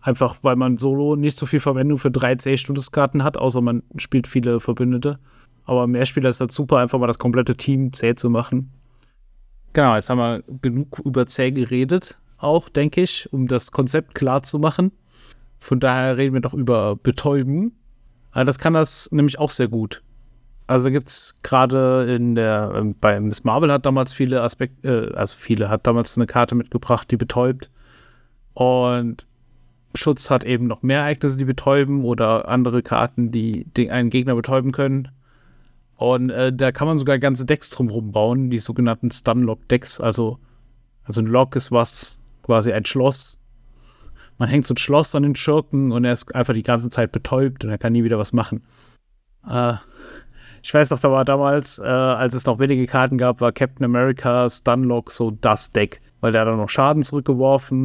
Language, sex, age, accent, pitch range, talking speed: German, male, 30-49, German, 120-135 Hz, 185 wpm